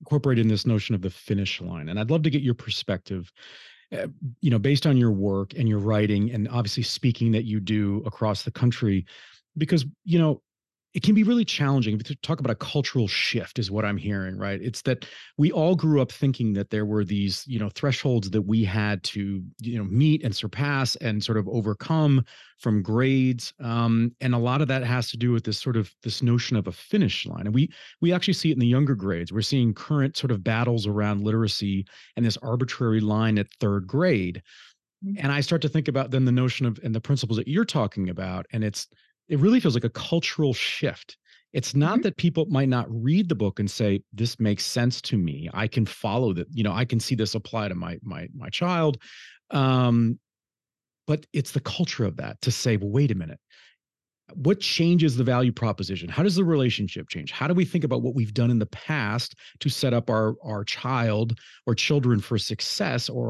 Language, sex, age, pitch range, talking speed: English, male, 30-49, 105-140 Hz, 215 wpm